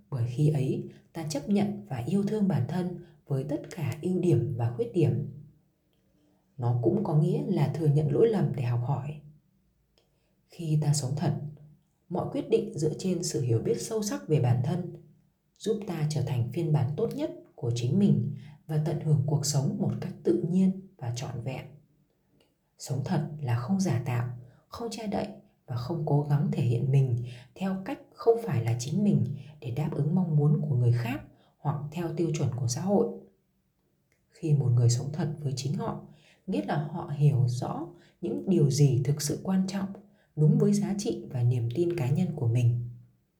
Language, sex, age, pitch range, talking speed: Vietnamese, female, 20-39, 135-175 Hz, 195 wpm